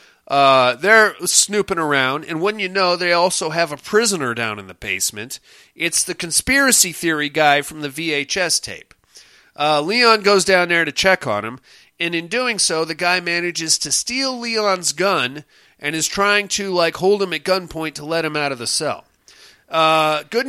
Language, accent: English, American